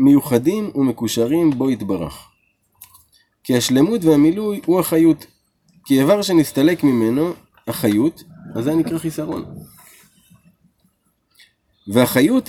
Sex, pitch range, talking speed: male, 110-155 Hz, 90 wpm